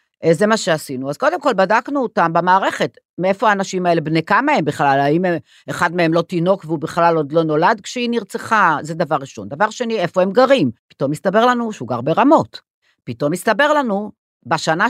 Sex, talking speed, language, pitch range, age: female, 190 wpm, Hebrew, 155-210 Hz, 50-69